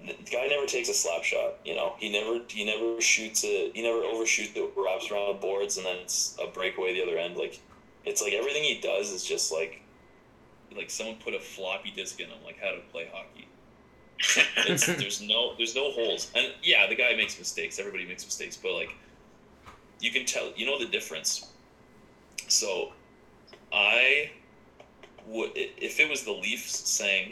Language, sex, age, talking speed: English, male, 20-39, 190 wpm